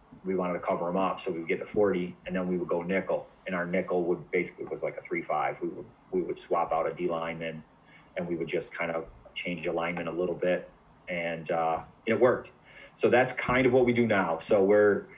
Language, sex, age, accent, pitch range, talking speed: English, male, 30-49, American, 95-115 Hz, 250 wpm